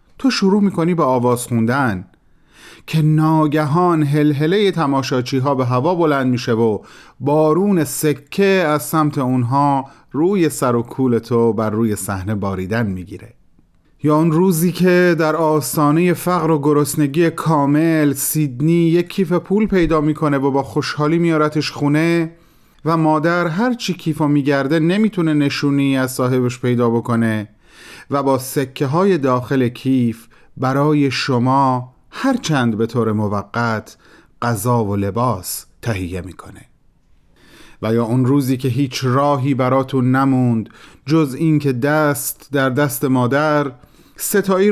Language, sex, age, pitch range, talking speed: Persian, male, 40-59, 125-160 Hz, 135 wpm